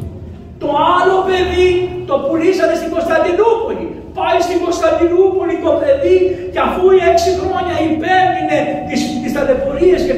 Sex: male